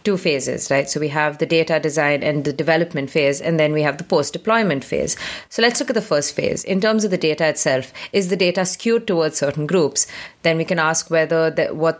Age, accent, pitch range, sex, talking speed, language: 30-49, Indian, 160-185 Hz, female, 230 wpm, English